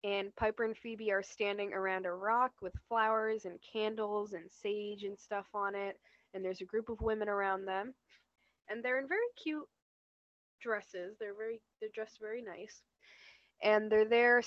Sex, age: female, 10-29